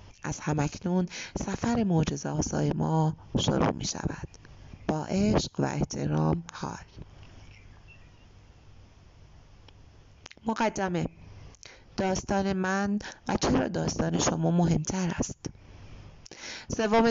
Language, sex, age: Persian, female, 30-49